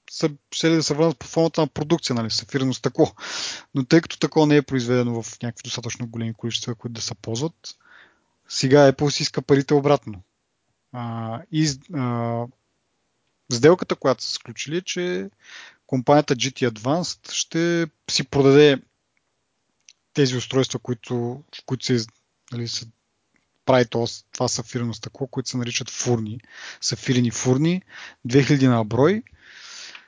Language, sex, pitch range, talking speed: Bulgarian, male, 120-150 Hz, 135 wpm